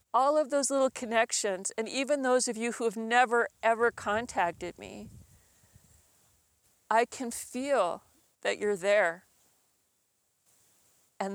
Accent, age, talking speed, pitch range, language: American, 40-59, 120 wpm, 185-210 Hz, English